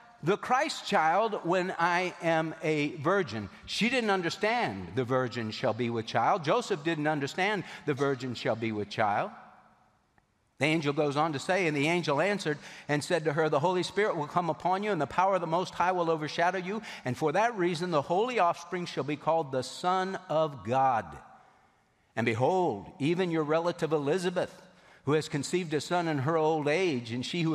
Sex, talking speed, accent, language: male, 195 wpm, American, English